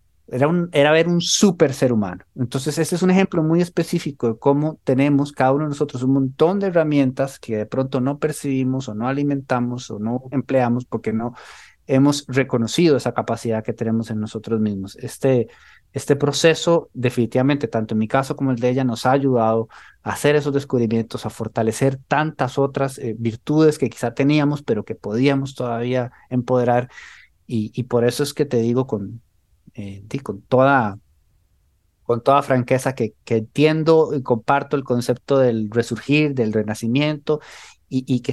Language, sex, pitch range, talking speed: English, male, 120-150 Hz, 175 wpm